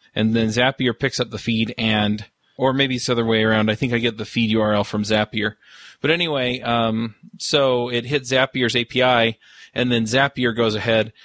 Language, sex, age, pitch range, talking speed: English, male, 20-39, 110-130 Hz, 200 wpm